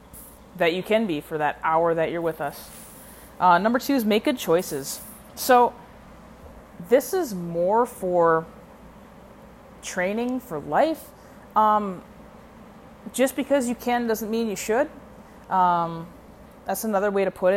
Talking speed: 140 wpm